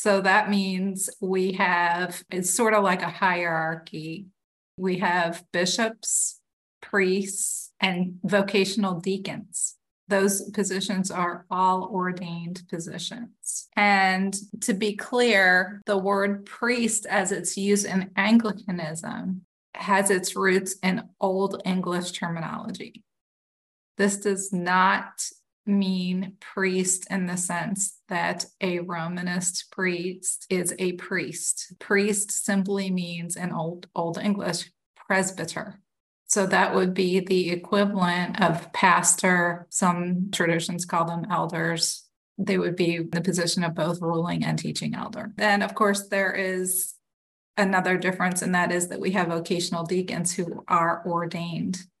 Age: 30-49